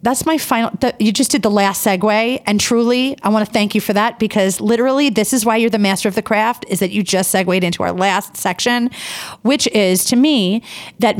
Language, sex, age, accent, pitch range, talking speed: English, female, 30-49, American, 190-240 Hz, 230 wpm